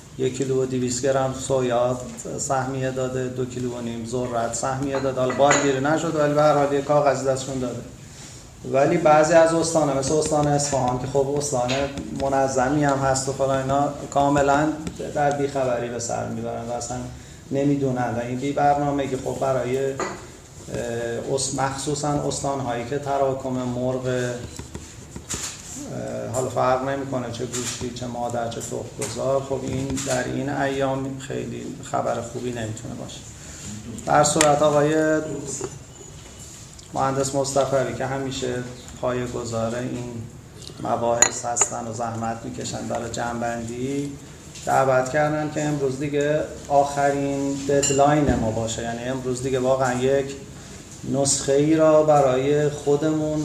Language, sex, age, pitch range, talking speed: Persian, male, 30-49, 125-140 Hz, 130 wpm